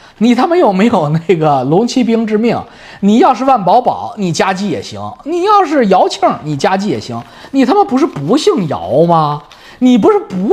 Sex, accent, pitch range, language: male, native, 175-280 Hz, Chinese